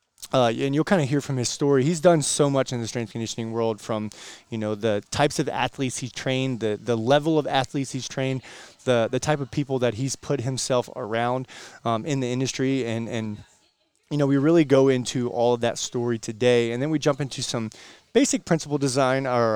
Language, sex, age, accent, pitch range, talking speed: English, male, 20-39, American, 115-145 Hz, 220 wpm